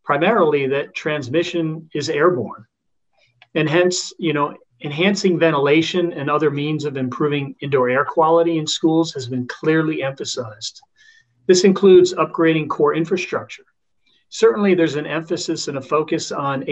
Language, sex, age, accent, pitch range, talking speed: English, male, 40-59, American, 140-180 Hz, 135 wpm